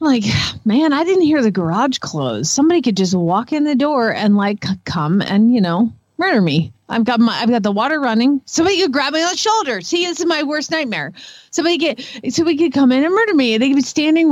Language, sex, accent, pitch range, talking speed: English, female, American, 210-305 Hz, 245 wpm